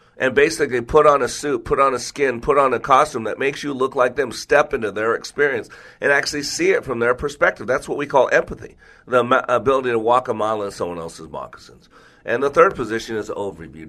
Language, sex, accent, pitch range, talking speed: English, male, American, 110-145 Hz, 225 wpm